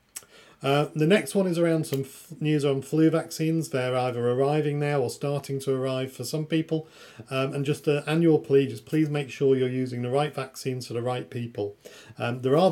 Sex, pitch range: male, 125-150 Hz